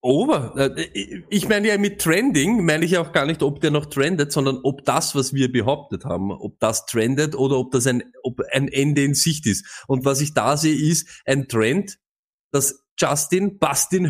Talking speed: 195 wpm